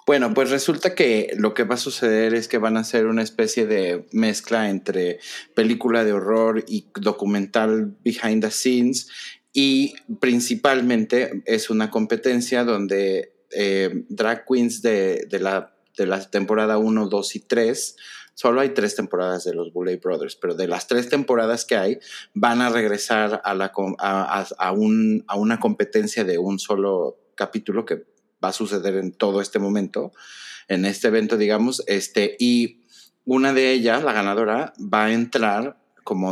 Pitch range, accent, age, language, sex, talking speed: 100-130 Hz, Mexican, 30-49, Spanish, male, 160 wpm